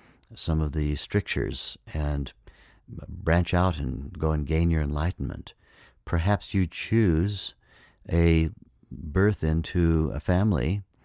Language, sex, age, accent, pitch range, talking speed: English, male, 60-79, American, 75-90 Hz, 115 wpm